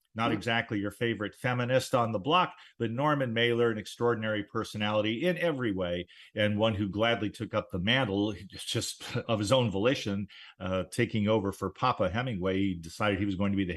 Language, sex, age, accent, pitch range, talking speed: English, male, 50-69, American, 100-145 Hz, 190 wpm